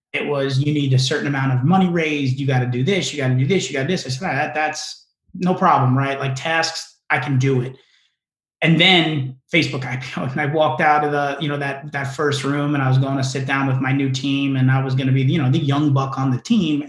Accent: American